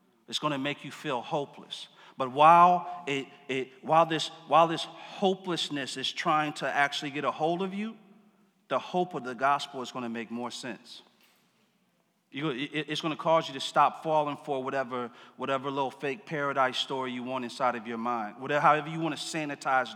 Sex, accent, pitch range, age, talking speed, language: male, American, 130-160 Hz, 40-59, 195 wpm, English